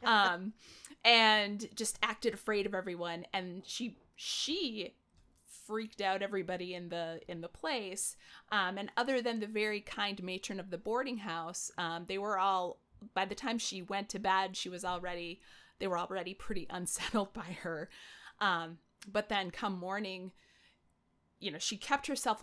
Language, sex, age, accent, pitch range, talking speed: English, female, 30-49, American, 175-215 Hz, 165 wpm